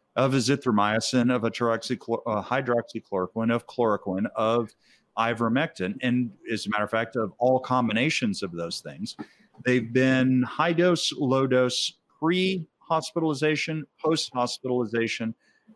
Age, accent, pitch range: 50-69, American, 115-145 Hz